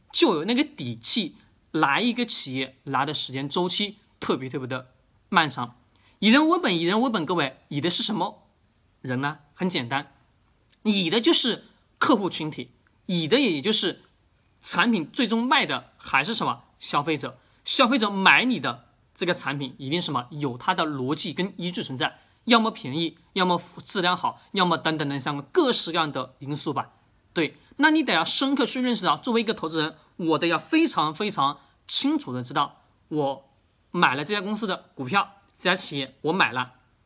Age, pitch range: 20-39, 135-210 Hz